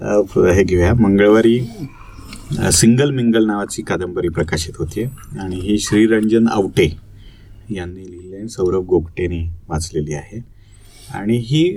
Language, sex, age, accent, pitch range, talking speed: Marathi, male, 30-49, native, 100-130 Hz, 105 wpm